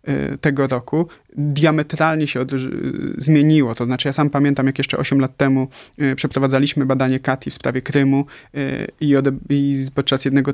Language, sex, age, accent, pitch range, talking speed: Polish, male, 30-49, native, 135-150 Hz, 140 wpm